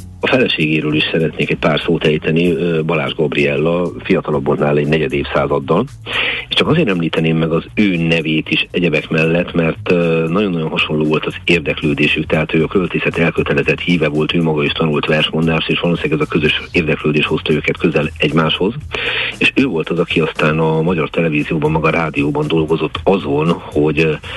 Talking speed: 170 wpm